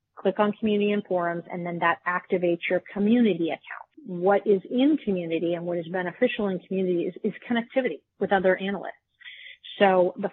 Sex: female